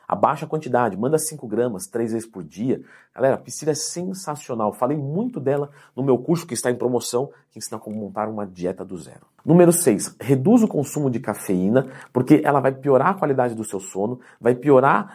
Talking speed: 205 wpm